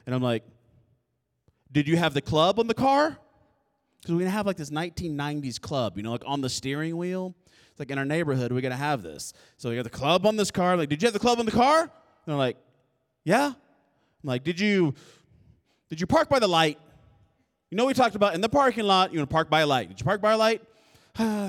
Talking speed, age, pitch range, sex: 255 wpm, 20-39, 135-215 Hz, male